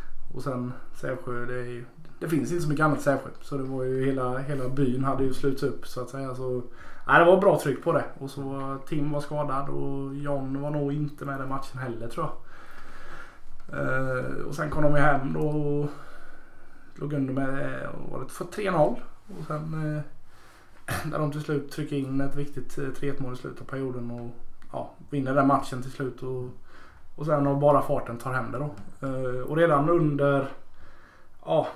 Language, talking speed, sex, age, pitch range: Swedish, 195 wpm, male, 20-39, 125-145 Hz